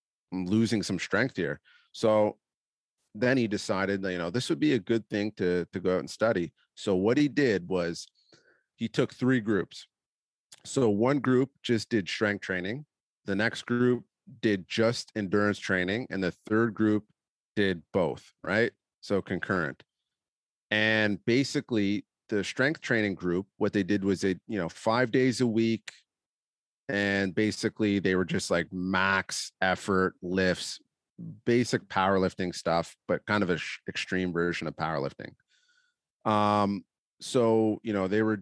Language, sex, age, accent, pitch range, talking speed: English, male, 40-59, American, 95-120 Hz, 155 wpm